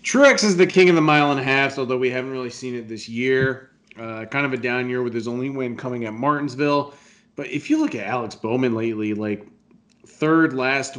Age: 30-49